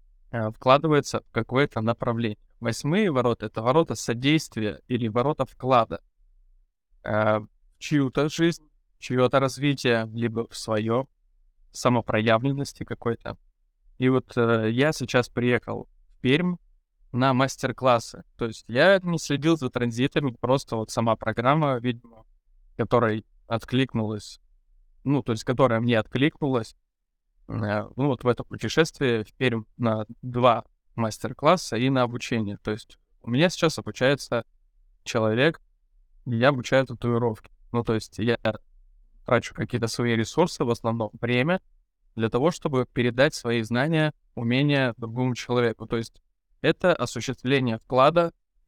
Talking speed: 130 wpm